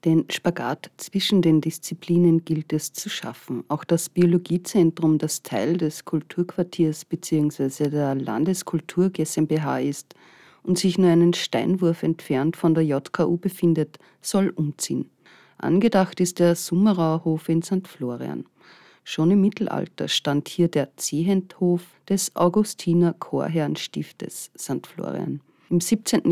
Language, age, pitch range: German, 40-59, 145-175 Hz